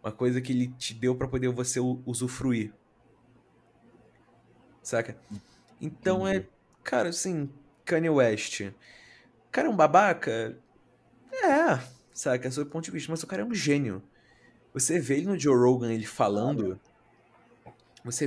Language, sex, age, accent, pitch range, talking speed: Portuguese, male, 20-39, Brazilian, 125-170 Hz, 140 wpm